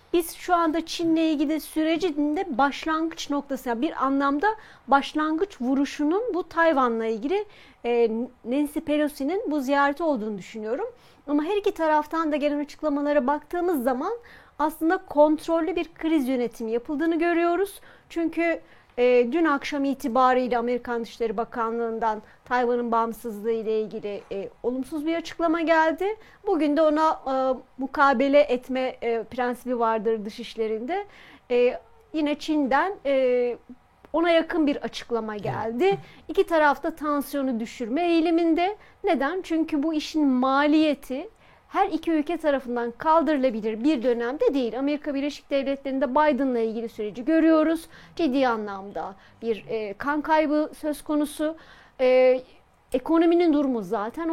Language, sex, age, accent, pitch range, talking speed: Turkish, female, 40-59, native, 255-325 Hz, 120 wpm